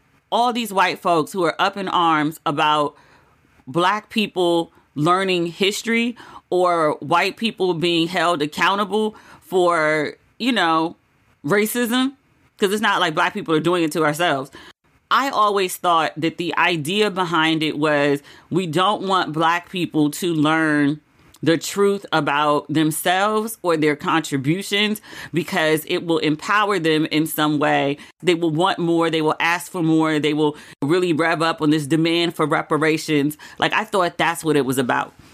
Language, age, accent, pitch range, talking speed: English, 40-59, American, 155-200 Hz, 160 wpm